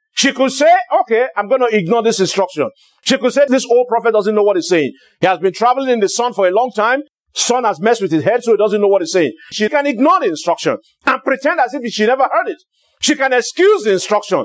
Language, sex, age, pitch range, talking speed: English, male, 50-69, 220-330 Hz, 260 wpm